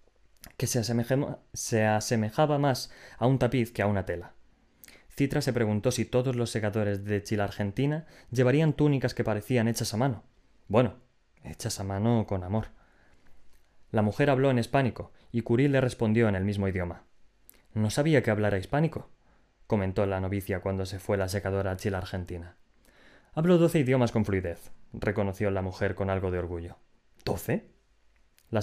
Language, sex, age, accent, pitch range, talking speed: Spanish, male, 20-39, Spanish, 100-125 Hz, 160 wpm